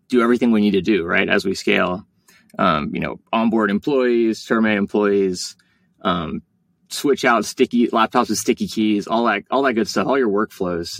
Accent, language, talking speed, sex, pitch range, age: American, English, 185 wpm, male, 105-125 Hz, 20-39